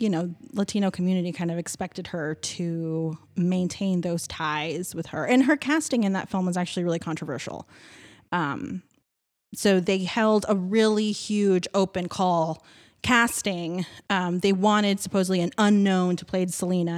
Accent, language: American, English